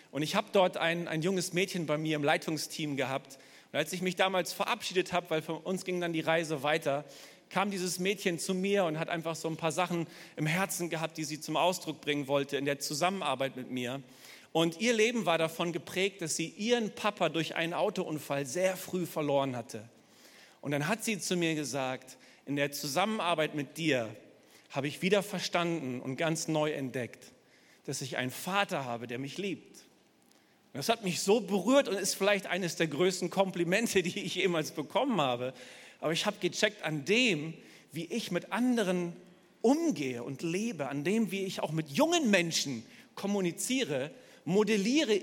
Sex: male